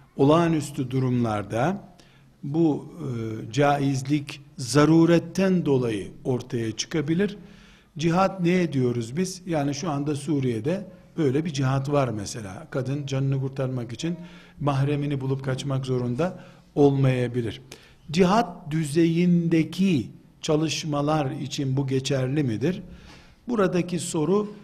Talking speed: 95 wpm